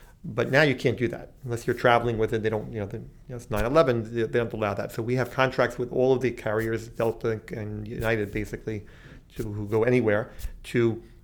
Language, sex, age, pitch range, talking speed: English, male, 40-59, 110-130 Hz, 220 wpm